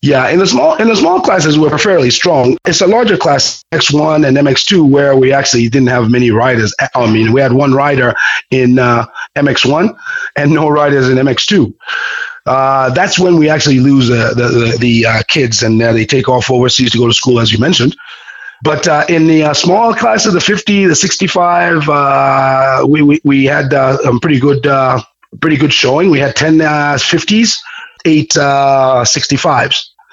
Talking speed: 195 wpm